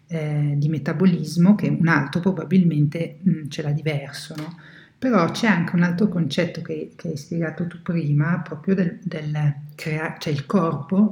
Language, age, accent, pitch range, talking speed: Italian, 50-69, native, 150-185 Hz, 165 wpm